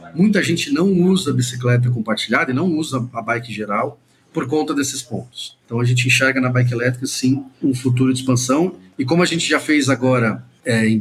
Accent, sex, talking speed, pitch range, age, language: Brazilian, male, 200 wpm, 120-140 Hz, 40-59, English